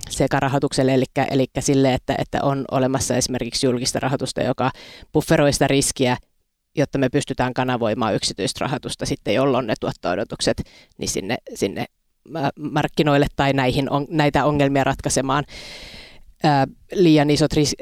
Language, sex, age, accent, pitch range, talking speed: Finnish, female, 30-49, native, 130-150 Hz, 130 wpm